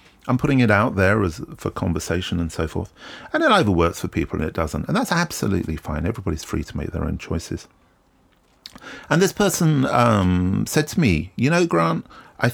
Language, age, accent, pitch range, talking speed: English, 40-59, British, 85-125 Hz, 200 wpm